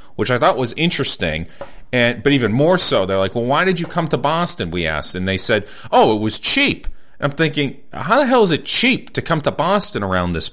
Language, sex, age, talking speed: English, male, 40-59, 245 wpm